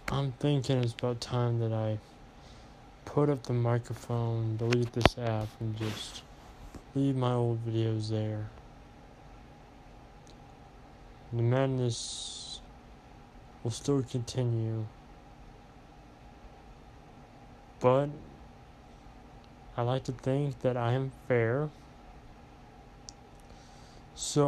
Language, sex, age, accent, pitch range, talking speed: English, male, 20-39, American, 115-130 Hz, 90 wpm